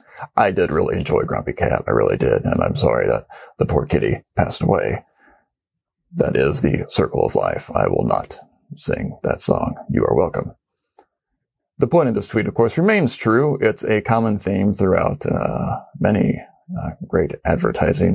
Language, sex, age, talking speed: English, male, 40-59, 170 wpm